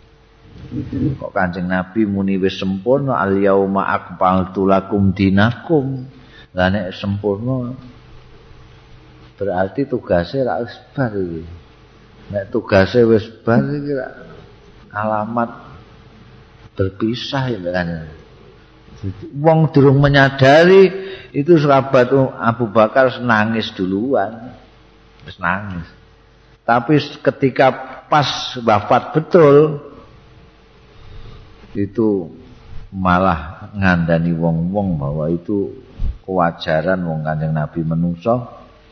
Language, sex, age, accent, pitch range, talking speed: Indonesian, male, 40-59, native, 90-125 Hz, 85 wpm